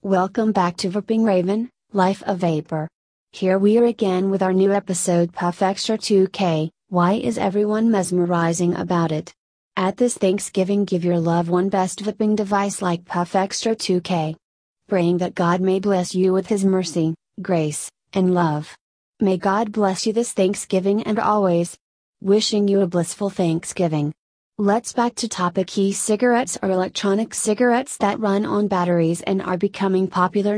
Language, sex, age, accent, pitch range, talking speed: English, female, 30-49, American, 175-210 Hz, 155 wpm